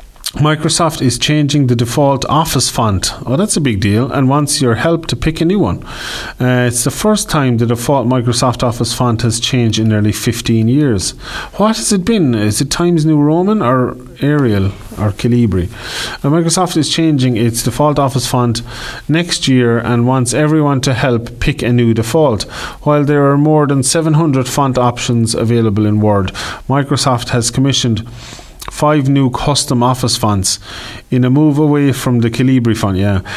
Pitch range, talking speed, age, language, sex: 115-140 Hz, 175 wpm, 30-49, English, male